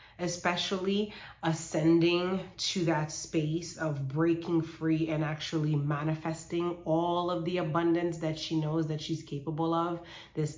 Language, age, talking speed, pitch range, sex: English, 30-49, 130 wpm, 155-185 Hz, female